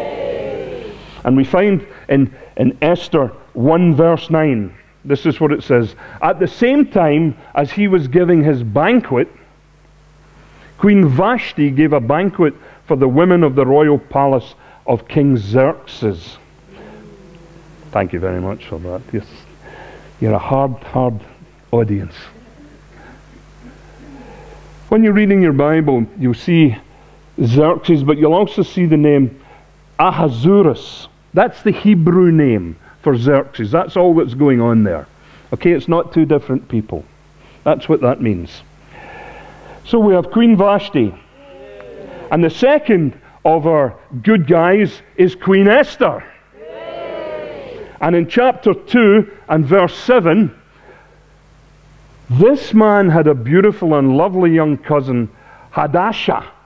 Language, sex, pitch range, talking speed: English, male, 135-190 Hz, 125 wpm